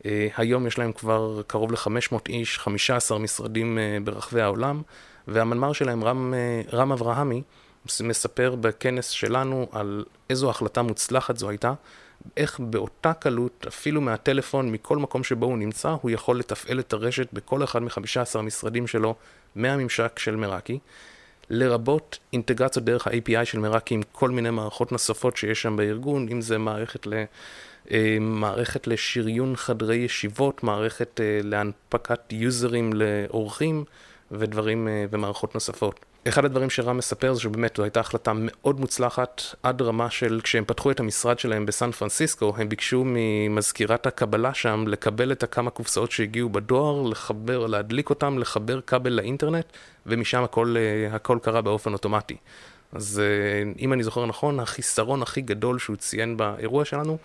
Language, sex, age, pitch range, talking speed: Hebrew, male, 30-49, 110-125 Hz, 145 wpm